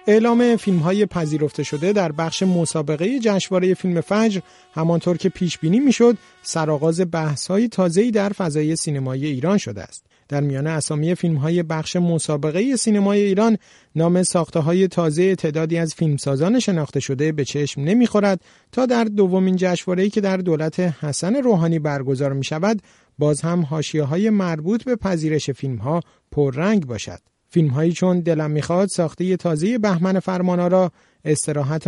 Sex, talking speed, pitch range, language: male, 145 wpm, 150-195 Hz, Persian